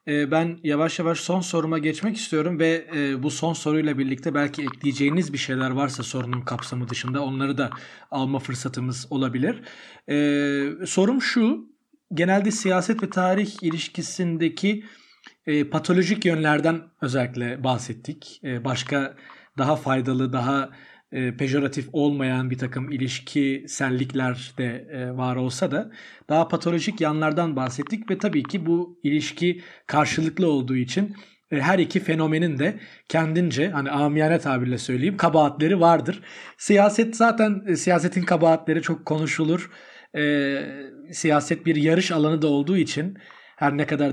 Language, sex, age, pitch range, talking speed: Turkish, male, 40-59, 135-175 Hz, 120 wpm